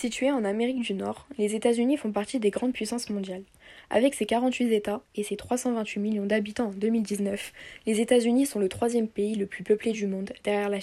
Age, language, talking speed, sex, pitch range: 10-29, French, 205 wpm, female, 200-240 Hz